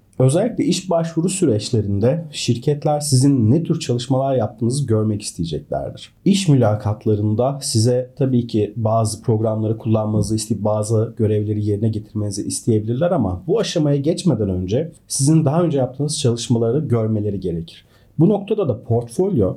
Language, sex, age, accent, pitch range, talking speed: Turkish, male, 40-59, native, 110-150 Hz, 130 wpm